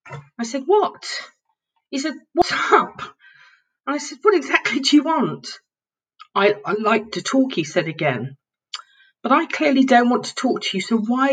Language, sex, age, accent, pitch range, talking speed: English, female, 40-59, British, 185-265 Hz, 180 wpm